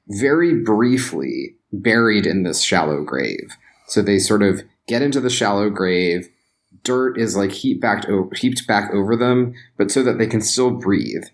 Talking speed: 160 wpm